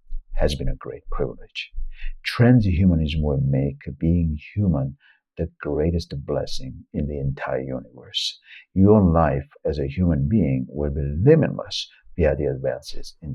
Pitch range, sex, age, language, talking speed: 70-90 Hz, male, 60-79, English, 135 wpm